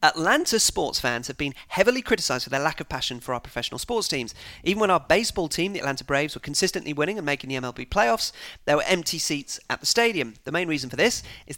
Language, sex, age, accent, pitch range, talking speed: English, male, 40-59, British, 130-180 Hz, 240 wpm